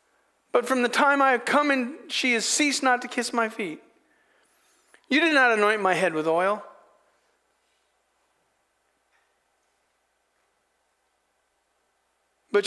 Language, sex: English, male